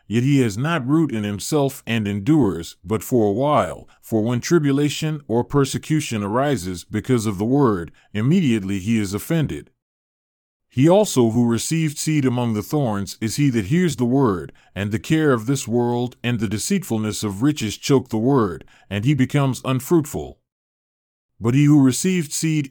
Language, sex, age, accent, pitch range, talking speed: English, male, 30-49, American, 110-145 Hz, 170 wpm